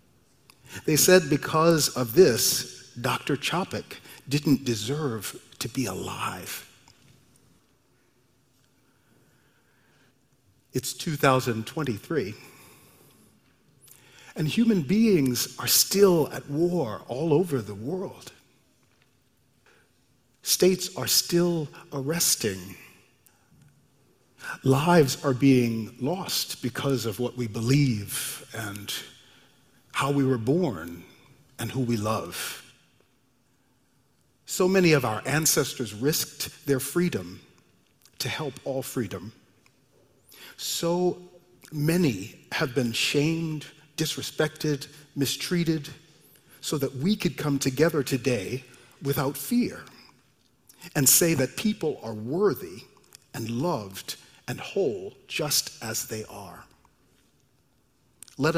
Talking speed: 90 wpm